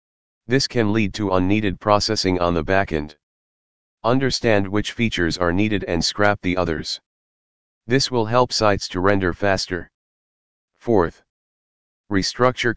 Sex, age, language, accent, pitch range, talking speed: male, 40-59, English, American, 90-105 Hz, 125 wpm